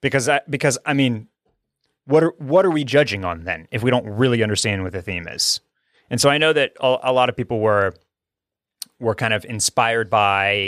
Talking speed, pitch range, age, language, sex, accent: 215 wpm, 105-130 Hz, 30-49, English, male, American